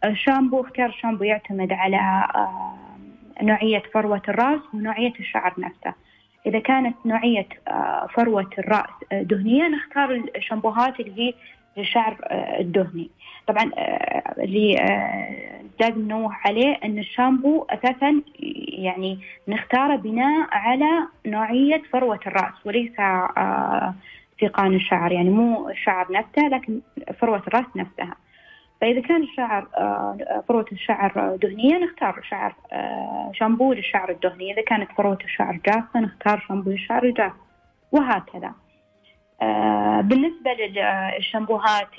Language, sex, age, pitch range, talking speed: Arabic, female, 20-39, 195-250 Hz, 100 wpm